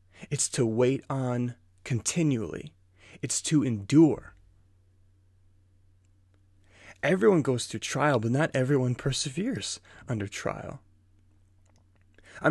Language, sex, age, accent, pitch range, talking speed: English, male, 20-39, American, 95-135 Hz, 90 wpm